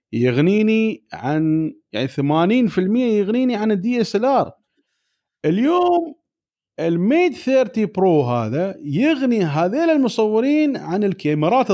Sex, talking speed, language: male, 95 wpm, Arabic